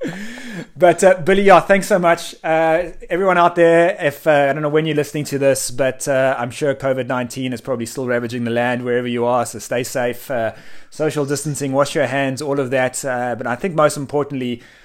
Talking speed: 215 wpm